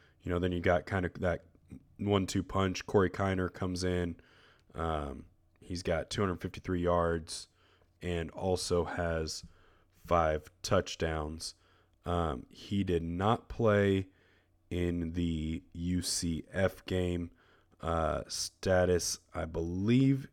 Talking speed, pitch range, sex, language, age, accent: 110 wpm, 85-95 Hz, male, English, 20-39, American